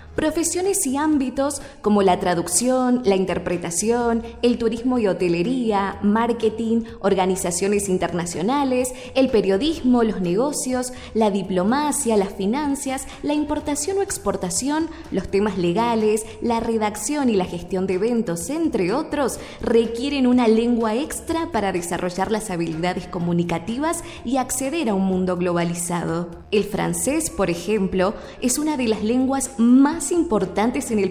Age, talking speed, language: 20-39, 130 wpm, Spanish